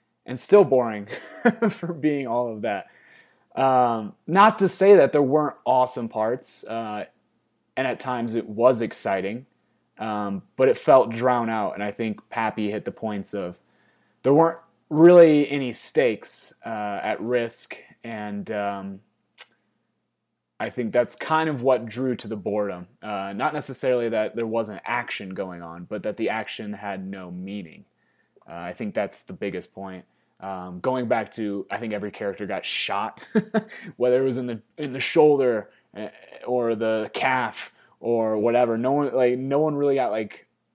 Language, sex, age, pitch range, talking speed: English, male, 20-39, 105-140 Hz, 165 wpm